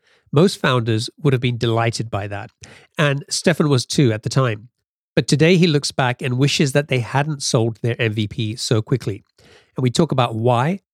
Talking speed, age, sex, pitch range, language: 190 wpm, 40-59, male, 115-135 Hz, English